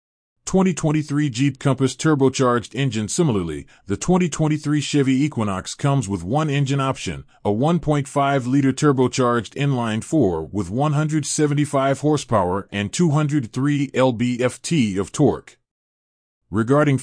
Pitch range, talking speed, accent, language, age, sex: 110-145 Hz, 145 wpm, American, English, 30-49, male